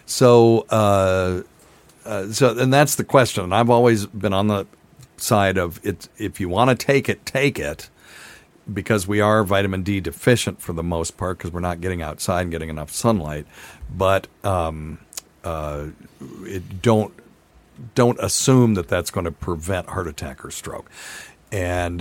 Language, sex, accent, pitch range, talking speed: English, male, American, 85-110 Hz, 165 wpm